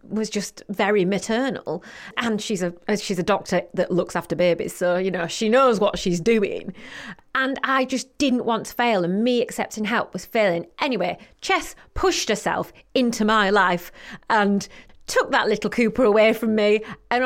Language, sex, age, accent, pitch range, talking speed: English, female, 30-49, British, 200-255 Hz, 175 wpm